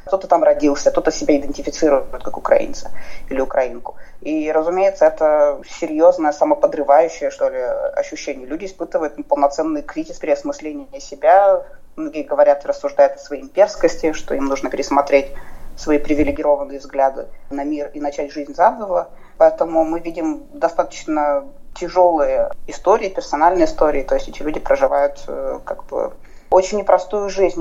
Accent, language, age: native, Russian, 20-39